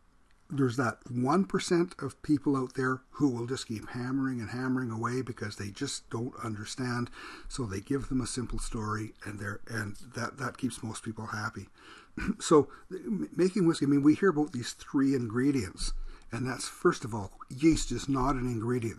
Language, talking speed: English, 185 wpm